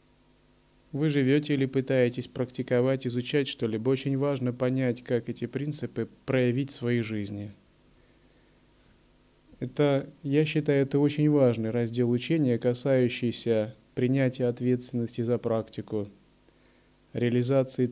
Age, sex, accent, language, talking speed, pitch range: 30-49, male, native, Russian, 105 wpm, 110-140 Hz